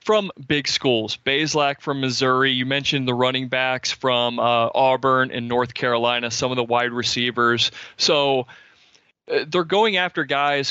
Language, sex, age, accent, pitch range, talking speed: English, male, 30-49, American, 125-145 Hz, 155 wpm